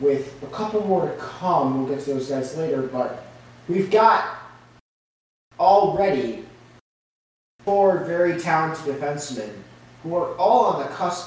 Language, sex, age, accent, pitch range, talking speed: English, male, 30-49, American, 145-215 Hz, 140 wpm